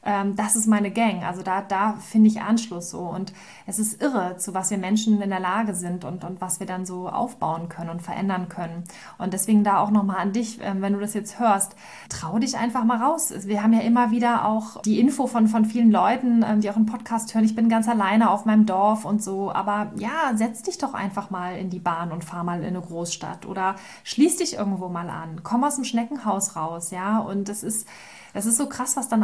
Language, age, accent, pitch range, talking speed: German, 20-39, German, 195-230 Hz, 235 wpm